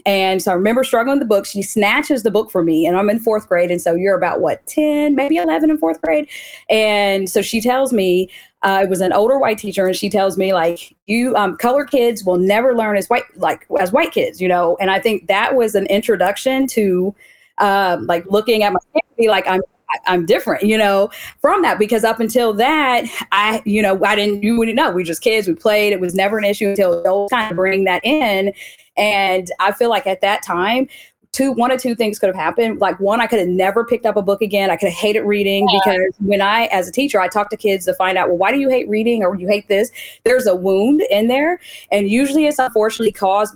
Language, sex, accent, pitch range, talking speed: English, female, American, 190-235 Hz, 245 wpm